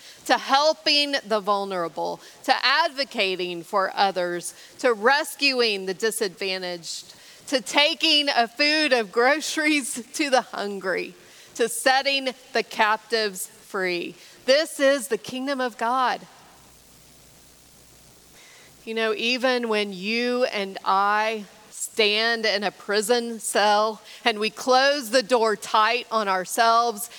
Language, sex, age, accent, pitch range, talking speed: English, female, 30-49, American, 200-255 Hz, 115 wpm